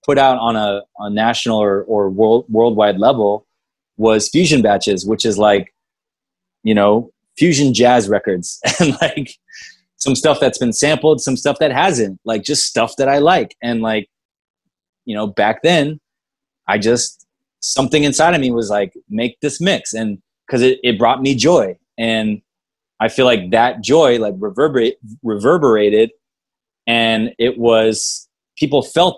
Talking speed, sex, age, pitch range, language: 160 wpm, male, 20-39, 110-140 Hz, English